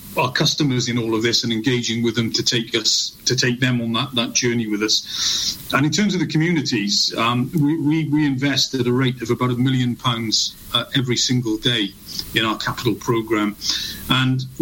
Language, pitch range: English, 120-145 Hz